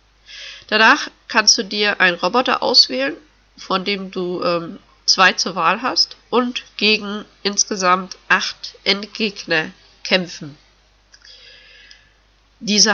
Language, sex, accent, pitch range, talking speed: German, female, German, 190-235 Hz, 100 wpm